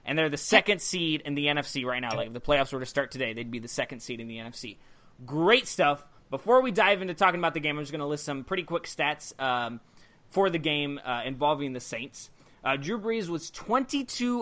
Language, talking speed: English, 240 wpm